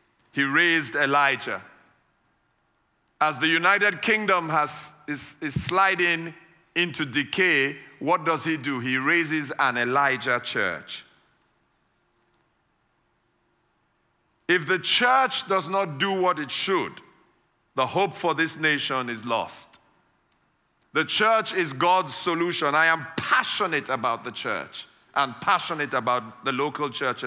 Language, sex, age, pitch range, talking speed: English, male, 50-69, 150-190 Hz, 120 wpm